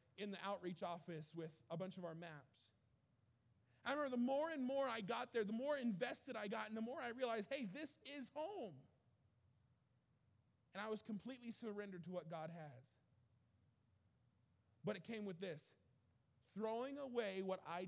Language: English